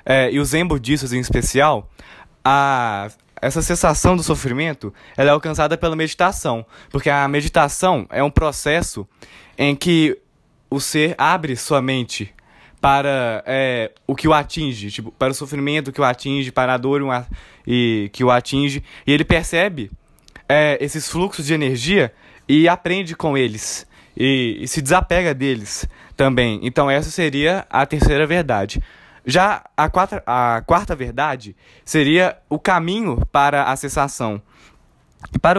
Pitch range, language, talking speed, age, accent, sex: 130-170 Hz, Portuguese, 145 wpm, 20-39, Brazilian, male